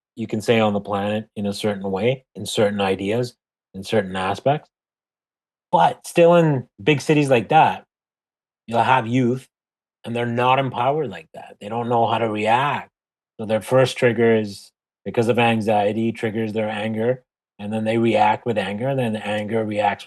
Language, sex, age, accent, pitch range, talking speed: English, male, 30-49, American, 105-130 Hz, 175 wpm